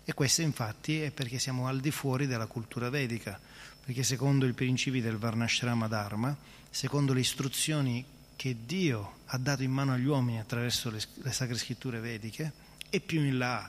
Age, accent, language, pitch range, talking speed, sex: 30-49, native, Italian, 120-145 Hz, 175 wpm, male